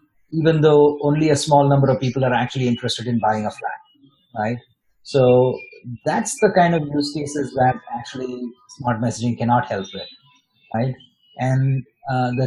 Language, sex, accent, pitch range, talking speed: English, male, Indian, 120-145 Hz, 165 wpm